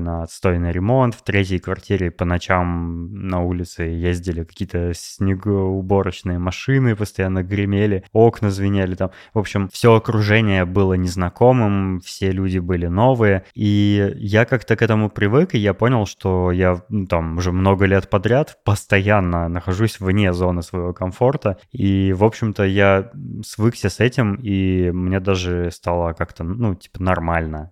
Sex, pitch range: male, 90-105 Hz